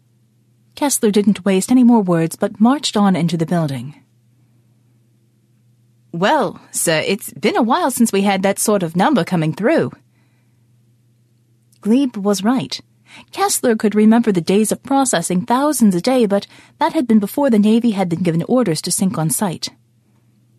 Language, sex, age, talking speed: English, female, 30-49, 160 wpm